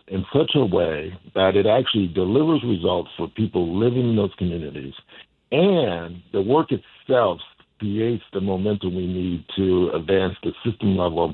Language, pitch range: English, 90-105 Hz